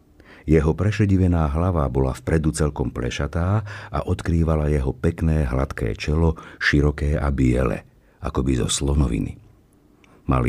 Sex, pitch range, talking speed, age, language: male, 75-100 Hz, 115 wpm, 50-69, Slovak